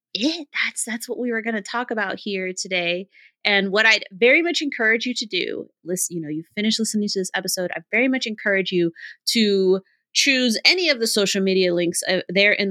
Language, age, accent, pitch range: English, 30-49, American, 180-225 Hz